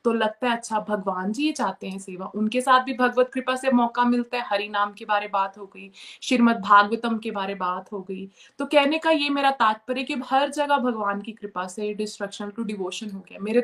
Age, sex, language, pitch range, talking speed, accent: 20-39, female, Hindi, 210-255 Hz, 220 wpm, native